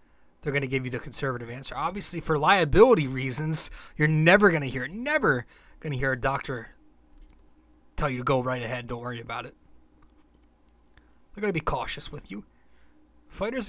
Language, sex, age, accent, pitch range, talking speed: English, male, 20-39, American, 125-165 Hz, 180 wpm